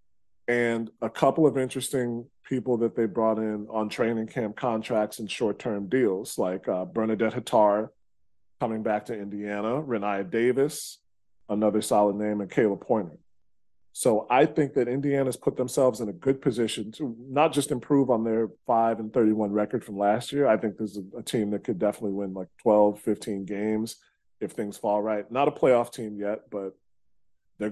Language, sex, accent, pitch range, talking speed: English, male, American, 105-130 Hz, 175 wpm